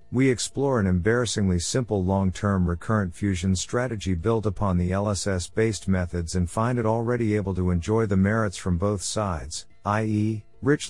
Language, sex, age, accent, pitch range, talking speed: English, male, 50-69, American, 90-115 Hz, 160 wpm